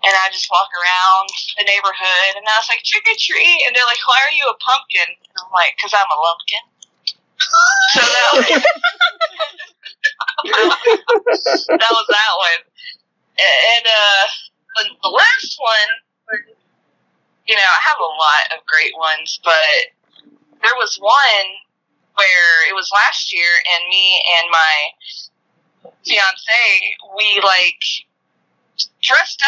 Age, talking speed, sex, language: 20-39, 130 wpm, female, English